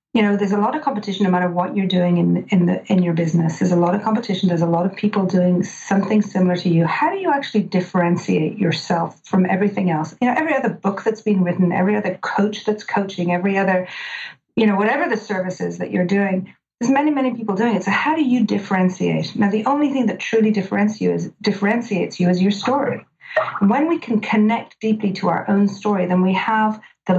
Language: English